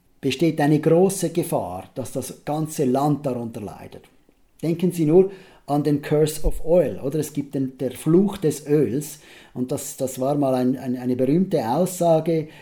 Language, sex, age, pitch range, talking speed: German, male, 50-69, 135-170 Hz, 170 wpm